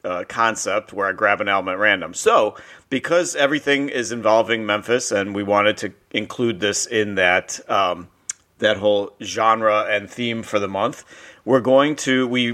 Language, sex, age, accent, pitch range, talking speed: English, male, 40-59, American, 100-125 Hz, 170 wpm